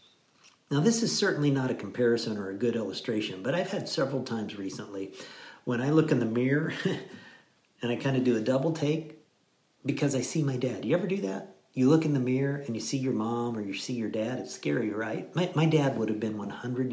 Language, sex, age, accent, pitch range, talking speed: English, male, 50-69, American, 120-155 Hz, 230 wpm